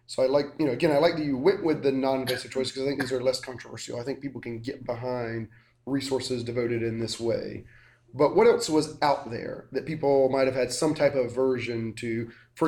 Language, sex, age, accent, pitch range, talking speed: English, male, 30-49, American, 115-140 Hz, 235 wpm